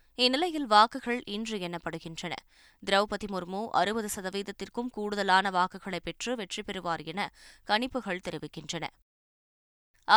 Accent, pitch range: native, 175-210 Hz